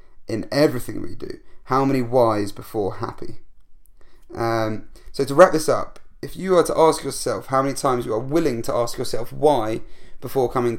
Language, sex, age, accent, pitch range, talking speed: English, male, 30-49, British, 115-135 Hz, 185 wpm